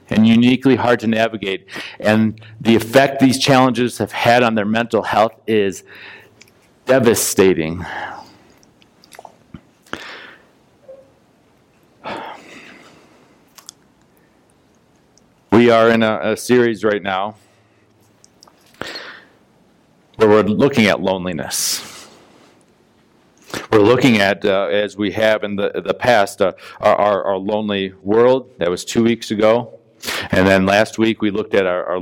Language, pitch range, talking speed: English, 100-115 Hz, 115 wpm